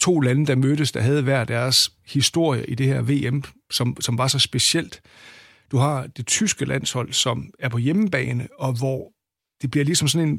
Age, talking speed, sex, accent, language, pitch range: 60-79, 195 wpm, male, native, Danish, 130-160 Hz